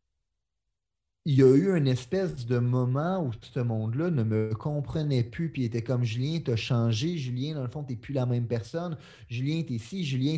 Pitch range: 125-165 Hz